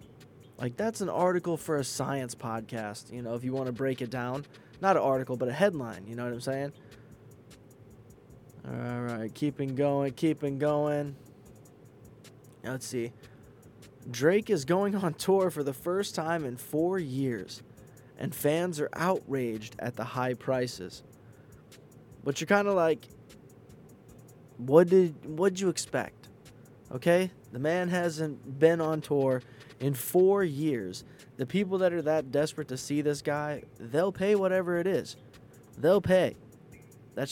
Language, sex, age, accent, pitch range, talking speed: English, male, 20-39, American, 125-165 Hz, 155 wpm